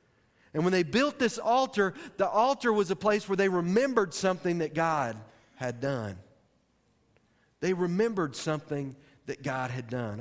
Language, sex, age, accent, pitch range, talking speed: English, male, 40-59, American, 130-180 Hz, 155 wpm